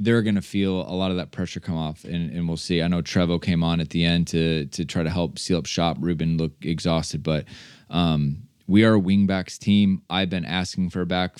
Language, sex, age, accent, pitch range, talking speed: English, male, 20-39, American, 85-100 Hz, 245 wpm